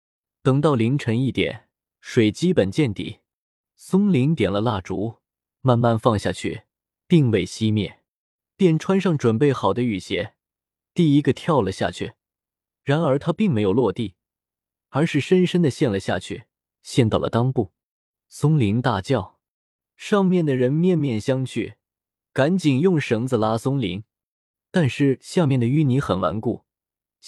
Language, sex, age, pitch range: Chinese, male, 20-39, 105-155 Hz